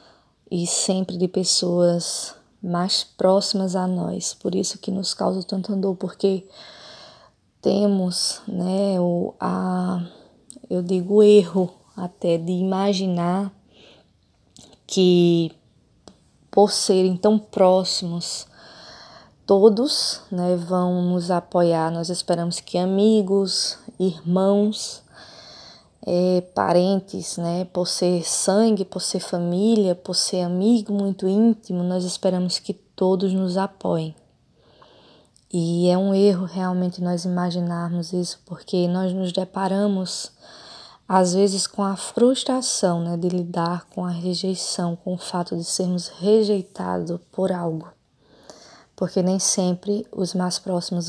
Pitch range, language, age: 180-195 Hz, Portuguese, 20-39